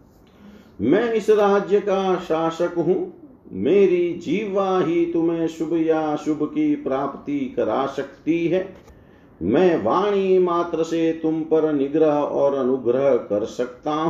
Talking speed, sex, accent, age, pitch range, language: 125 wpm, male, native, 50-69, 140-190 Hz, Hindi